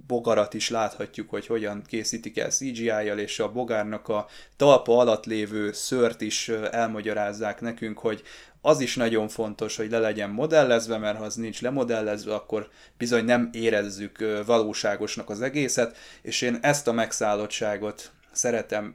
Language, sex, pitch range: Hungarian, male, 105-115 Hz